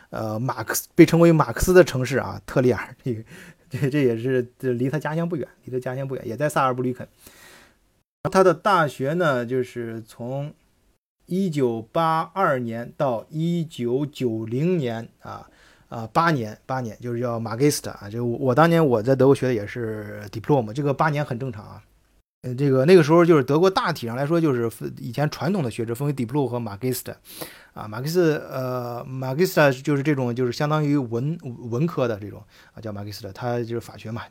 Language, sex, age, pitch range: Chinese, male, 20-39, 120-155 Hz